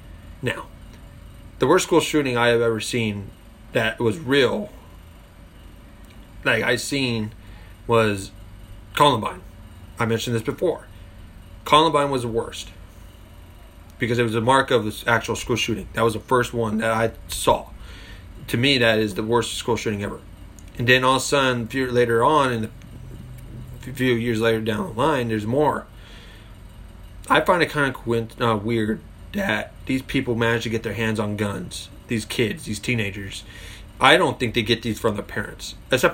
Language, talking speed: English, 170 wpm